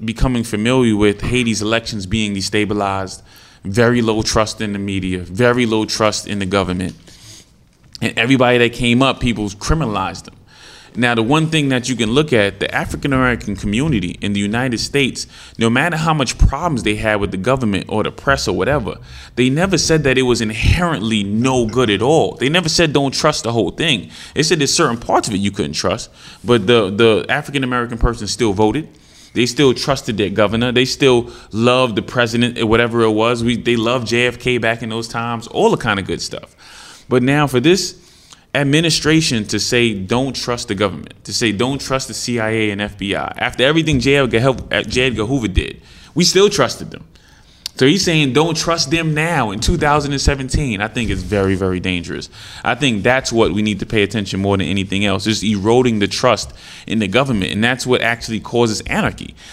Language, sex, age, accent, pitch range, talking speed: English, male, 20-39, American, 105-130 Hz, 195 wpm